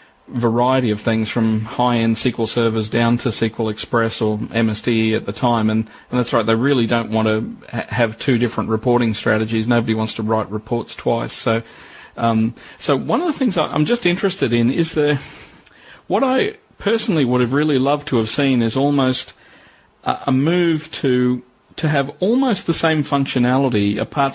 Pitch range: 115-140 Hz